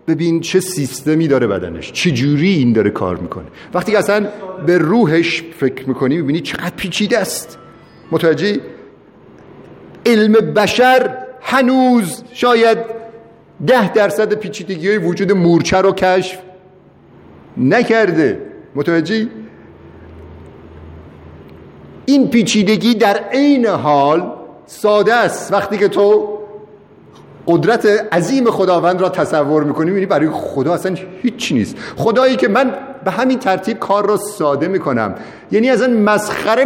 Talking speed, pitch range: 115 wpm, 165-230 Hz